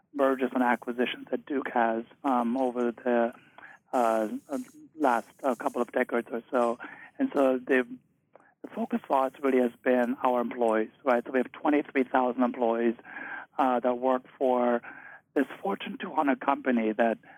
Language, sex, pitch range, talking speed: English, male, 120-135 Hz, 150 wpm